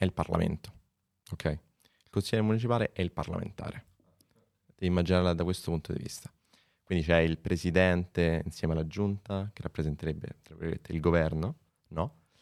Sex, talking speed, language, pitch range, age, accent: male, 140 wpm, Italian, 80-90 Hz, 20-39, native